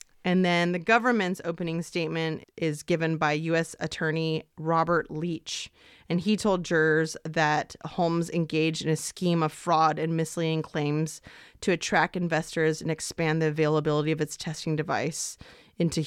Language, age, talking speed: English, 30-49, 150 wpm